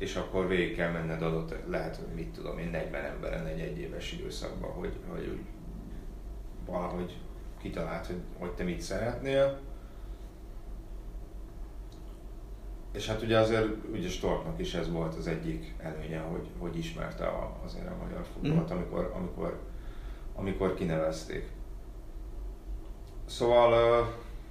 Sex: male